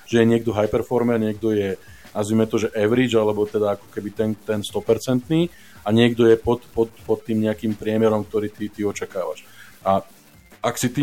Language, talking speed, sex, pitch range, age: Slovak, 180 wpm, male, 105-120 Hz, 20-39